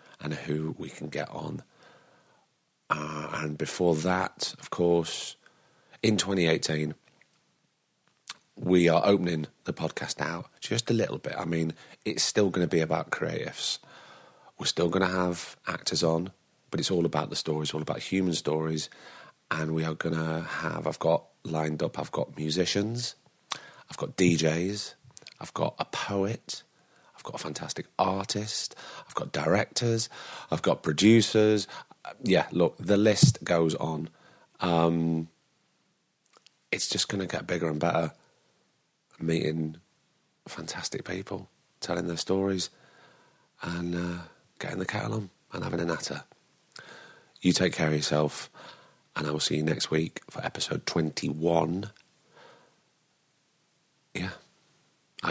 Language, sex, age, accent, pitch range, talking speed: English, male, 30-49, British, 80-95 Hz, 135 wpm